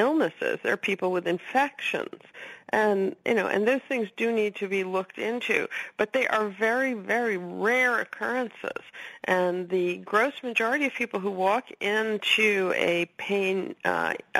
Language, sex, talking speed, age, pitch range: English, female, 150 wpm, 50-69, 175-230 Hz